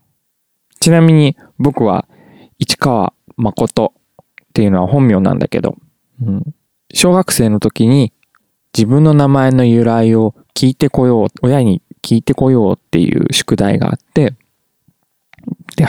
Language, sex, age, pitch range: Japanese, male, 20-39, 100-135 Hz